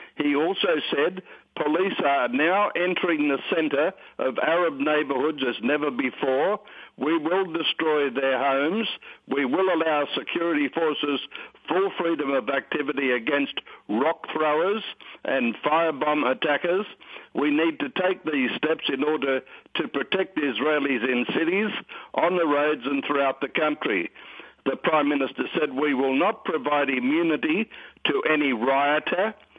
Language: English